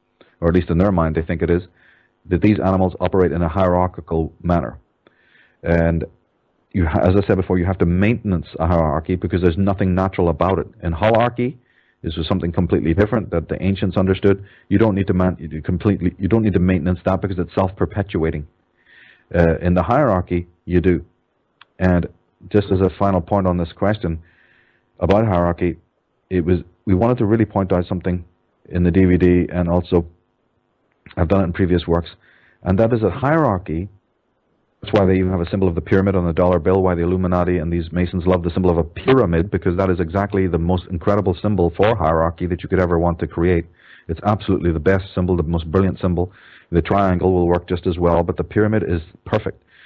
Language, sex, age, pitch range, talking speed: English, male, 40-59, 85-95 Hz, 205 wpm